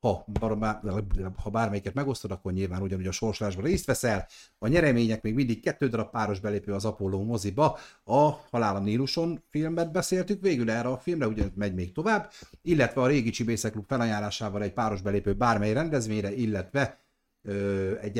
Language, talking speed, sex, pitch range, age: Hungarian, 155 wpm, male, 100-135 Hz, 60-79